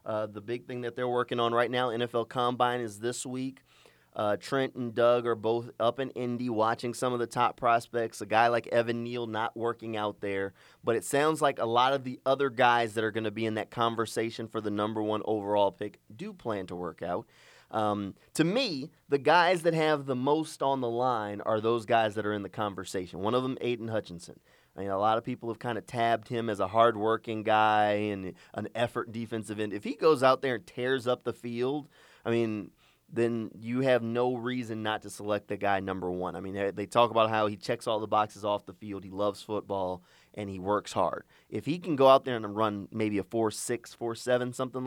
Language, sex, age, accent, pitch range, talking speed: English, male, 30-49, American, 105-125 Hz, 235 wpm